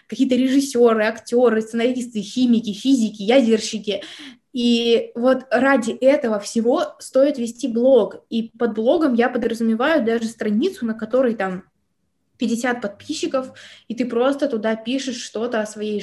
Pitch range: 220-270 Hz